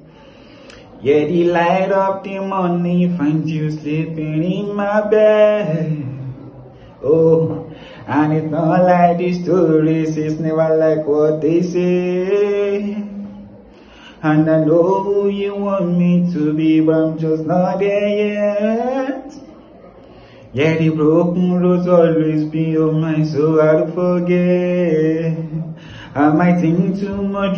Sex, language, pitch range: male, English, 155-180 Hz